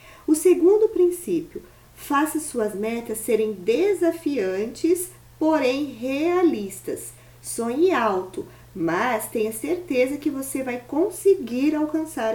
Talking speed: 95 wpm